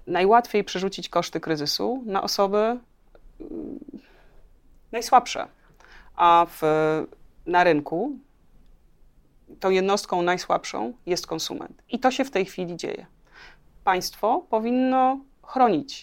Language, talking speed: Polish, 95 wpm